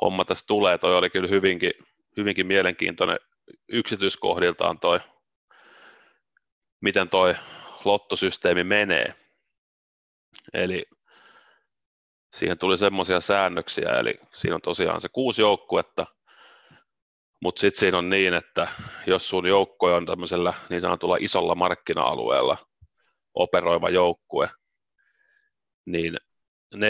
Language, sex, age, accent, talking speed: Finnish, male, 30-49, native, 105 wpm